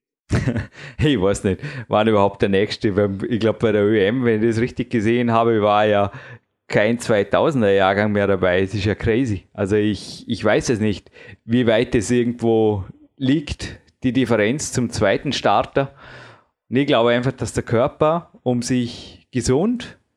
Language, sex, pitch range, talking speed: German, male, 110-130 Hz, 165 wpm